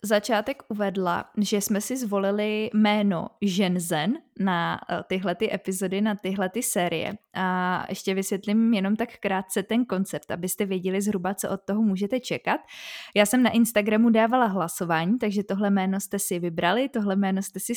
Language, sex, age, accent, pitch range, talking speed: Czech, female, 20-39, native, 190-215 Hz, 160 wpm